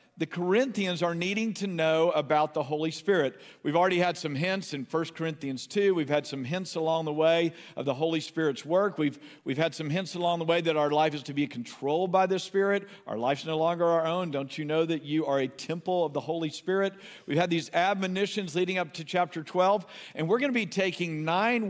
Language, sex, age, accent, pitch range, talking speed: English, male, 50-69, American, 155-195 Hz, 230 wpm